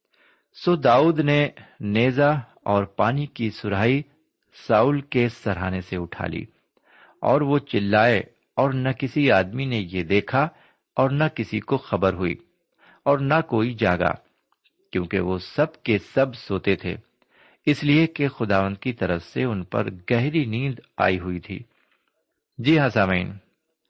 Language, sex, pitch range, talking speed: Urdu, male, 95-135 Hz, 145 wpm